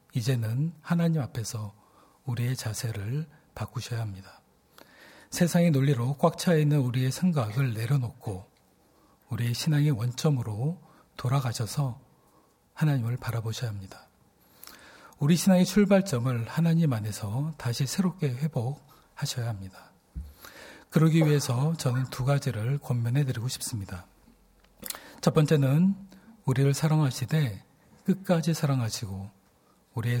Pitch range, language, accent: 120-155 Hz, Korean, native